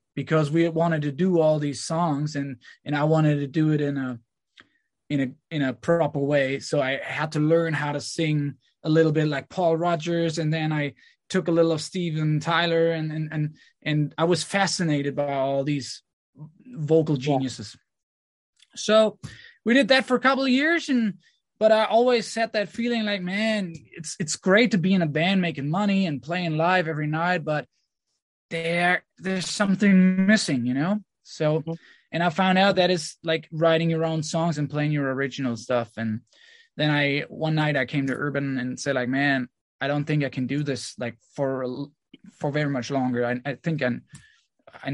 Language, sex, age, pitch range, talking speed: English, male, 20-39, 135-170 Hz, 195 wpm